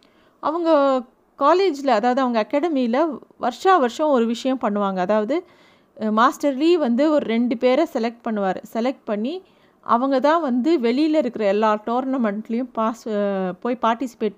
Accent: native